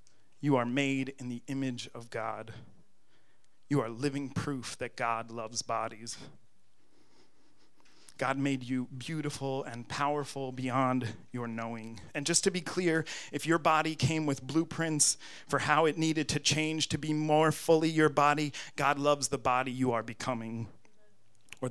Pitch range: 120-145 Hz